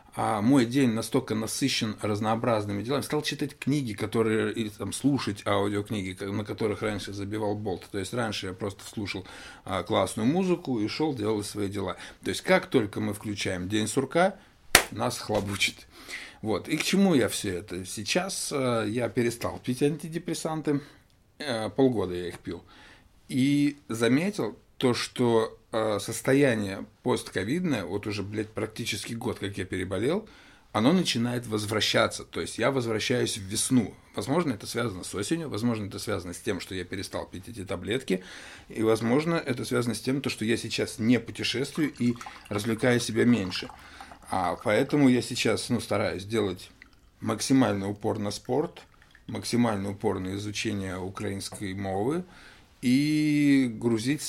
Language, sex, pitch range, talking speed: Russian, male, 100-130 Hz, 145 wpm